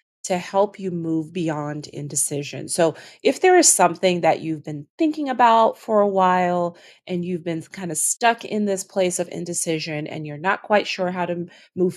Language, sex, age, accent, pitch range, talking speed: English, female, 30-49, American, 160-200 Hz, 190 wpm